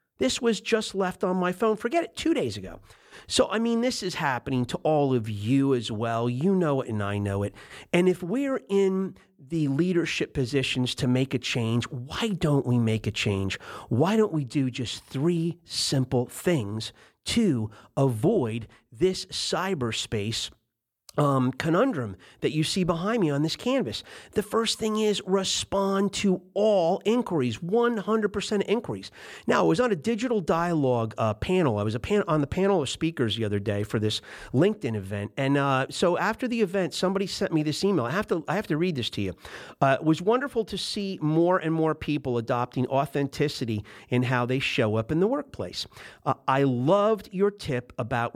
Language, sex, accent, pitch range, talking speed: English, male, American, 120-195 Hz, 190 wpm